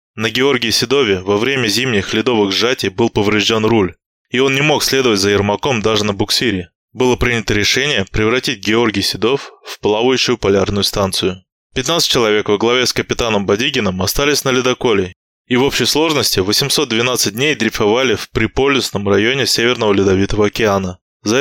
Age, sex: 20-39, male